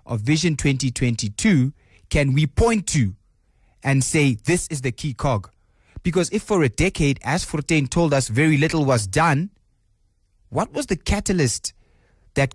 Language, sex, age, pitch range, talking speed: English, male, 20-39, 115-160 Hz, 155 wpm